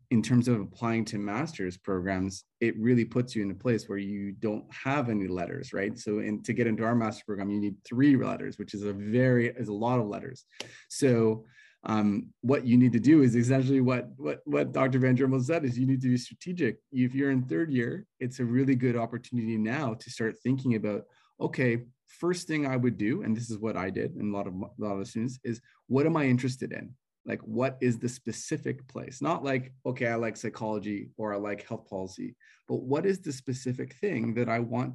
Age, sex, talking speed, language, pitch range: 30-49, male, 220 wpm, English, 110-125 Hz